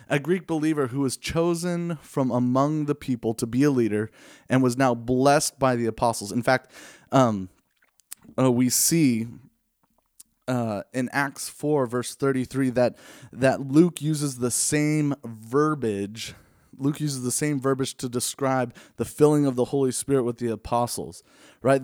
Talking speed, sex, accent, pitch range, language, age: 155 wpm, male, American, 120-145 Hz, English, 20-39